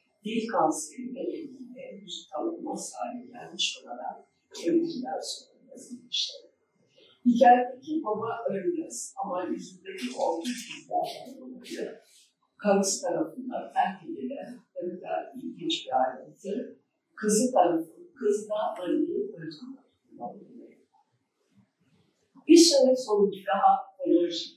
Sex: female